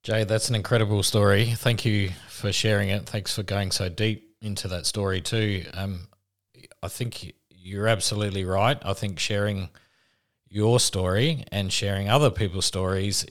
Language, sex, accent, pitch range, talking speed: English, male, Australian, 90-110 Hz, 160 wpm